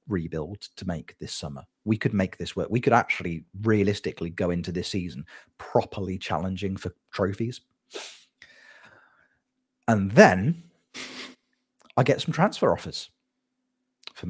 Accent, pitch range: British, 95-145 Hz